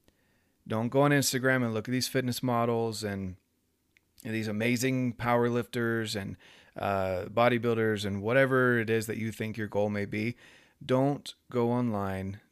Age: 30-49